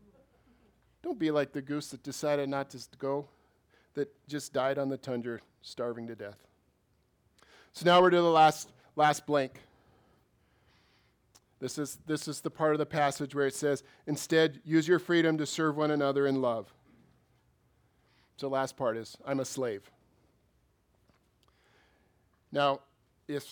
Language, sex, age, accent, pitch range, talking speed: English, male, 40-59, American, 125-150 Hz, 150 wpm